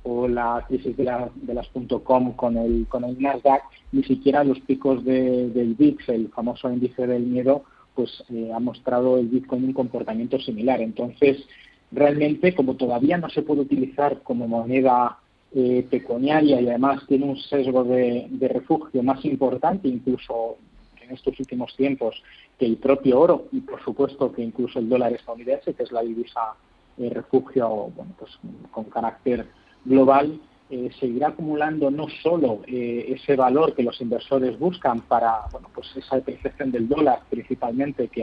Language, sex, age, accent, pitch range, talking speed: Spanish, male, 30-49, Spanish, 120-140 Hz, 155 wpm